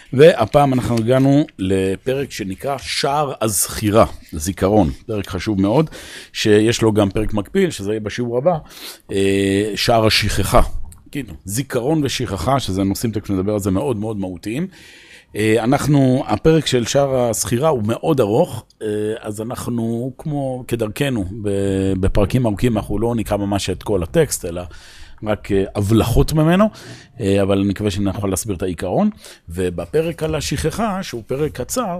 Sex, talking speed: male, 135 wpm